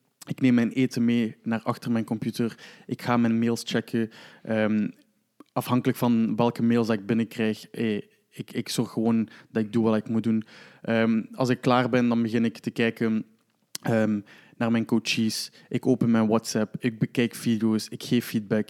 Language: Dutch